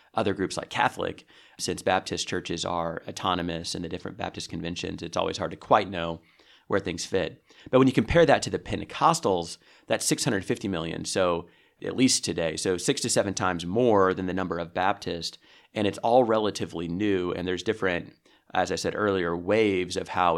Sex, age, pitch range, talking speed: male, 30-49, 90-105 Hz, 190 wpm